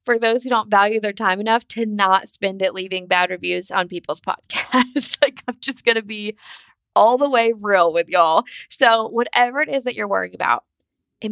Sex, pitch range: female, 205-255 Hz